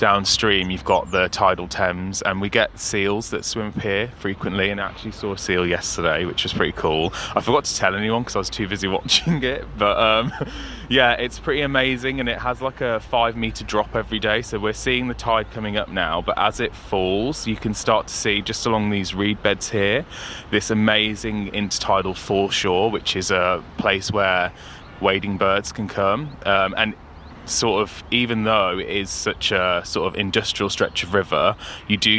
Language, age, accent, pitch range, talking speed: English, 20-39, British, 95-110 Hz, 200 wpm